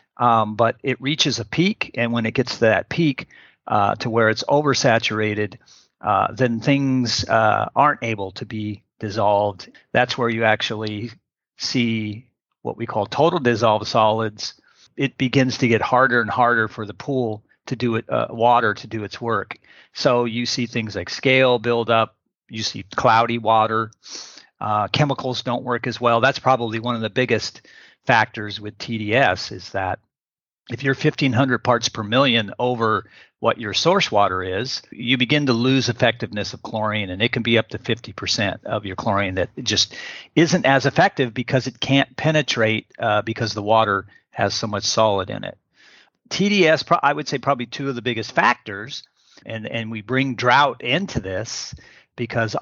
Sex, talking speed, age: male, 175 wpm, 40-59